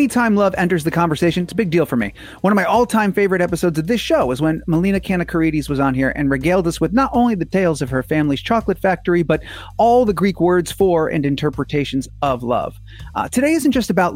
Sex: male